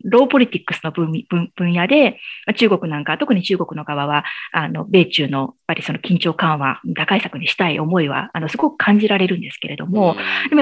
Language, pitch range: Japanese, 165-225 Hz